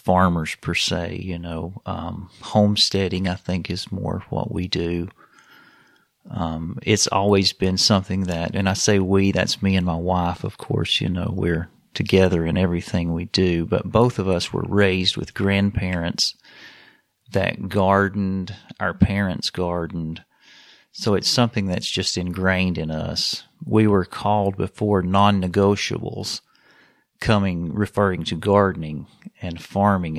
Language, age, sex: English, 40-59, male